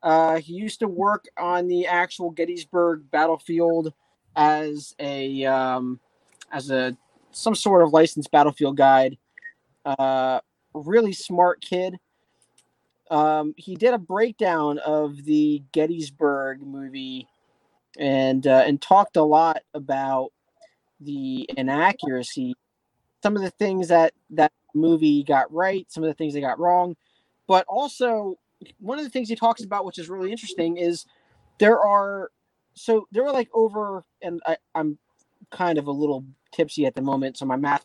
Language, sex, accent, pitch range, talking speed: English, male, American, 140-195 Hz, 150 wpm